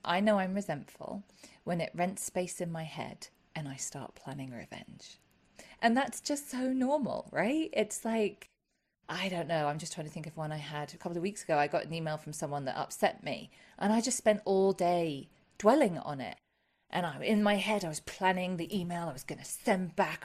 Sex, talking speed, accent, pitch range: female, 220 wpm, British, 175-225 Hz